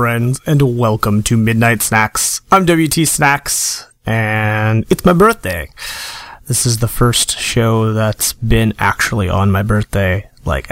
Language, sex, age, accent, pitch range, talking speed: English, male, 30-49, American, 110-130 Hz, 140 wpm